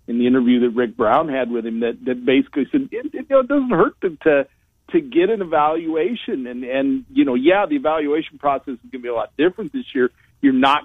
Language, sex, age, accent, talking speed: English, male, 40-59, American, 250 wpm